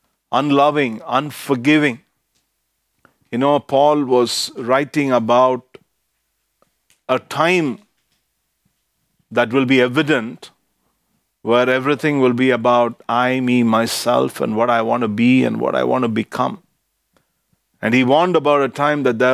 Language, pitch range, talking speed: English, 125-150 Hz, 130 wpm